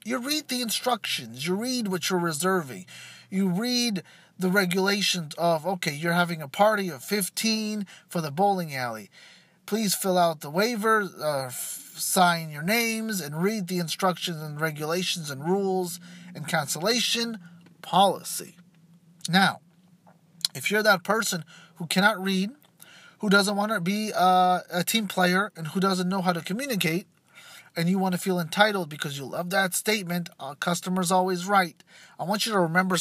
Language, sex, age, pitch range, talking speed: English, male, 30-49, 165-200 Hz, 160 wpm